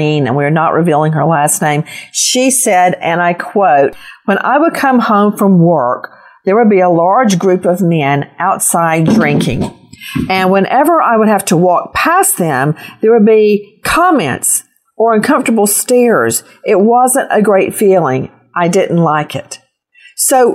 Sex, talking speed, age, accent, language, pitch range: female, 160 wpm, 50-69, American, English, 170-225 Hz